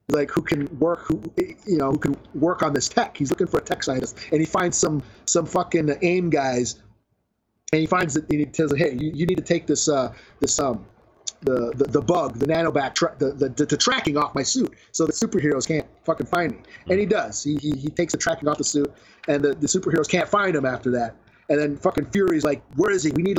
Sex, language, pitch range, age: male, English, 140-170 Hz, 30-49